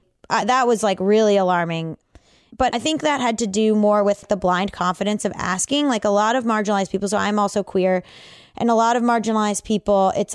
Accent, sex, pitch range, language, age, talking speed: American, female, 180-215 Hz, English, 20-39, 215 wpm